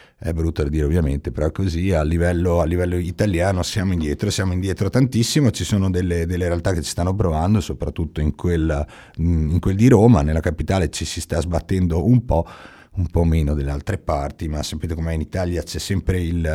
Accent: native